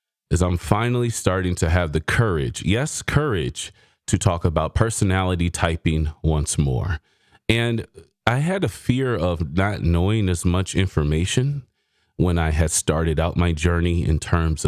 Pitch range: 80-105 Hz